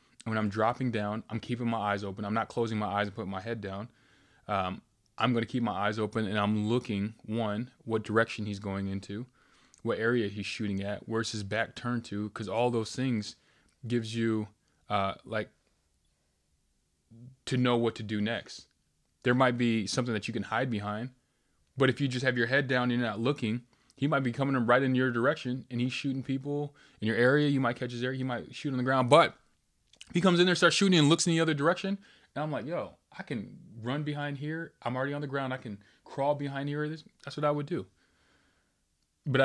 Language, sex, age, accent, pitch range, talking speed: English, male, 20-39, American, 105-130 Hz, 220 wpm